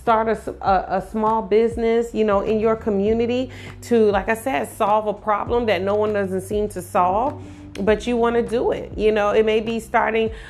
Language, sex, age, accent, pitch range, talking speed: English, female, 30-49, American, 180-220 Hz, 210 wpm